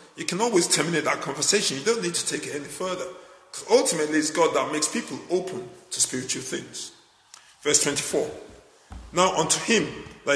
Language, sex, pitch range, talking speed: English, male, 150-245 Hz, 185 wpm